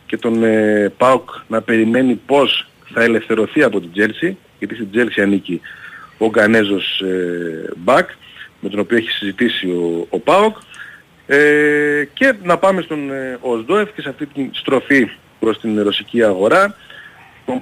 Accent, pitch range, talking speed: native, 105-145 Hz, 140 wpm